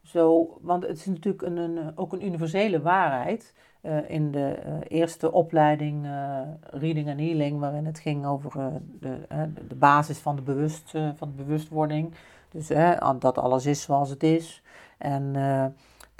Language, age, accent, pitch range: Dutch, 40-59, Dutch, 150-165 Hz